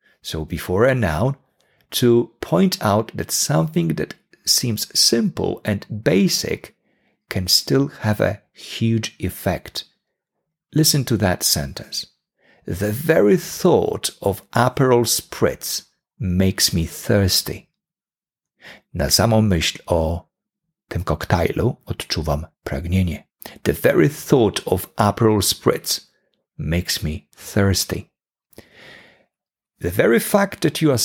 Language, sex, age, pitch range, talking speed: English, male, 50-69, 85-130 Hz, 110 wpm